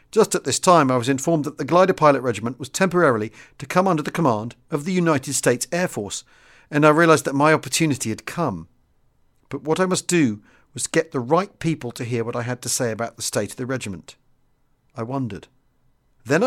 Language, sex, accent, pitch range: English, male, British, 120-155 Hz